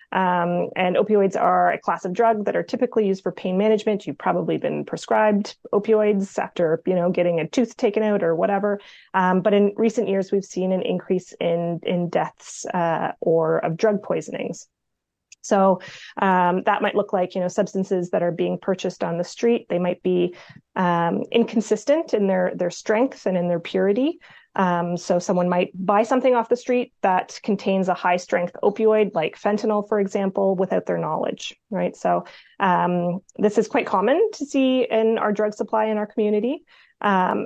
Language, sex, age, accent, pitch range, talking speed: English, female, 30-49, American, 180-215 Hz, 185 wpm